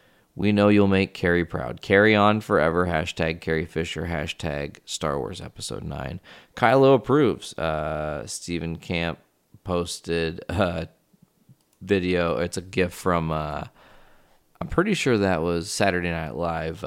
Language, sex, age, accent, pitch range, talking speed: English, male, 20-39, American, 85-100 Hz, 135 wpm